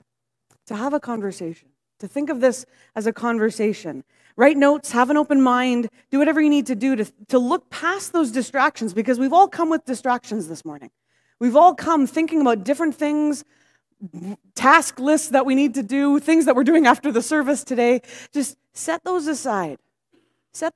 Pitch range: 215-295 Hz